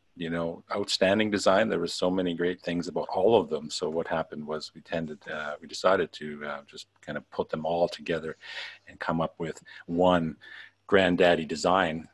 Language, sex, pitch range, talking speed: English, male, 80-90 Hz, 195 wpm